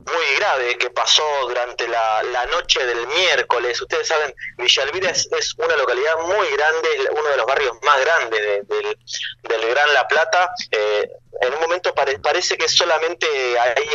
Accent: Argentinian